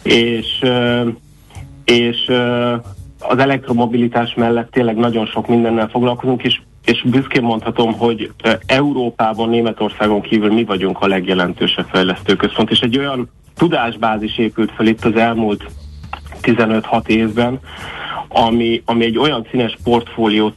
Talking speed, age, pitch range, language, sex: 115 wpm, 30-49, 105-120 Hz, Hungarian, male